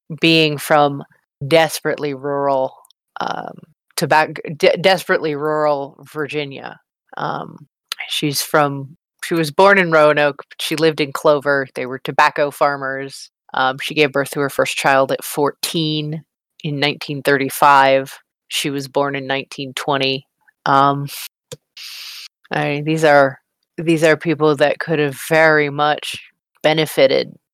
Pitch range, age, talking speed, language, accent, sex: 145-160 Hz, 30-49, 120 wpm, English, American, female